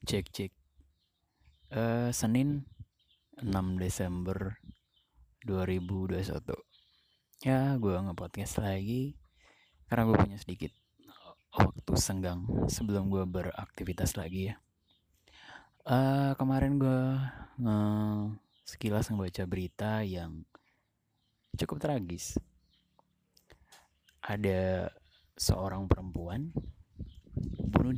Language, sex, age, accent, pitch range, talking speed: Indonesian, male, 20-39, native, 90-110 Hz, 70 wpm